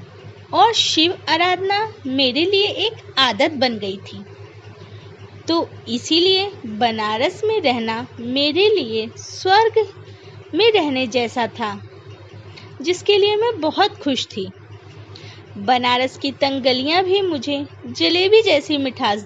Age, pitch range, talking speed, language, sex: 20-39, 225-380 Hz, 110 wpm, Hindi, female